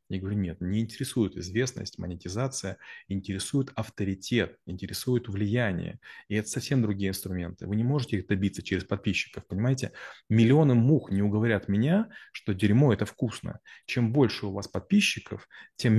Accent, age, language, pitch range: native, 30-49, Russian, 95-120 Hz